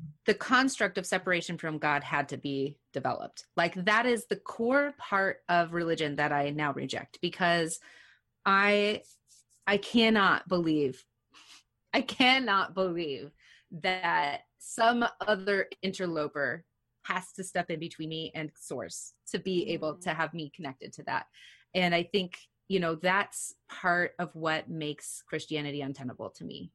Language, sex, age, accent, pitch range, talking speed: English, female, 30-49, American, 155-200 Hz, 145 wpm